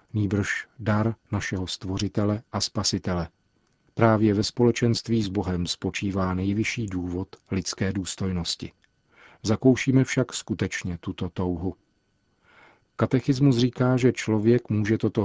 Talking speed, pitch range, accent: 105 wpm, 95-115 Hz, native